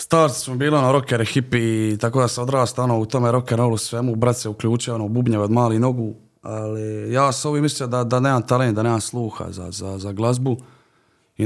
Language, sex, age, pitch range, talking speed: Croatian, male, 20-39, 110-135 Hz, 210 wpm